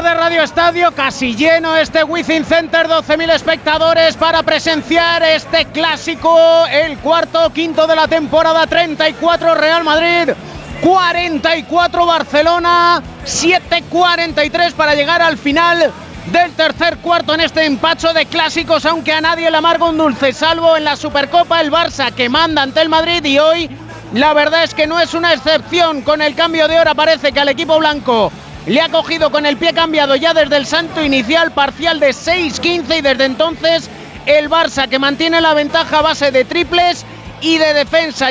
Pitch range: 295-330 Hz